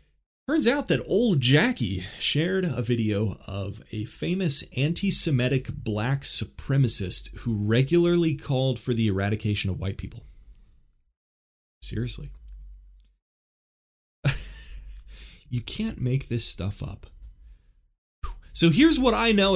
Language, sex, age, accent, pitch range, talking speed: English, male, 30-49, American, 85-130 Hz, 105 wpm